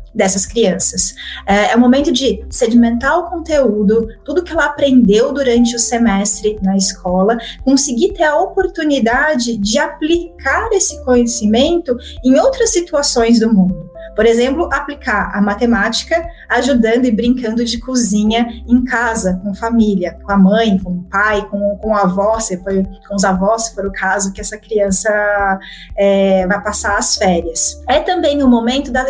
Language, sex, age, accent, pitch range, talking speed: Portuguese, female, 20-39, Brazilian, 210-275 Hz, 165 wpm